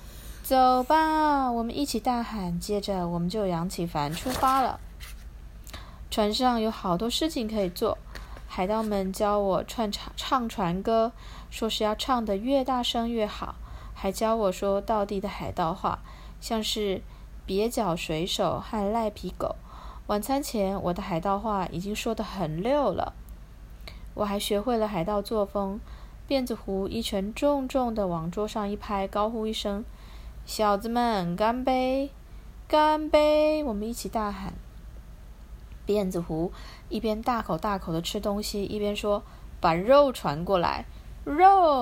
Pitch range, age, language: 185-235 Hz, 20-39, Chinese